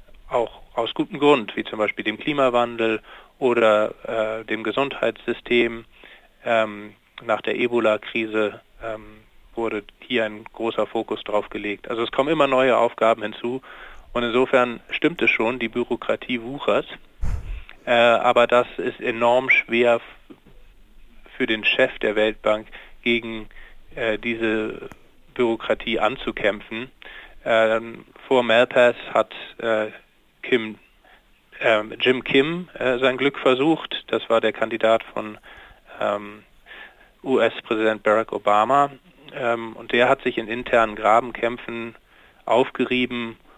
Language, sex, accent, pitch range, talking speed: German, male, German, 110-120 Hz, 115 wpm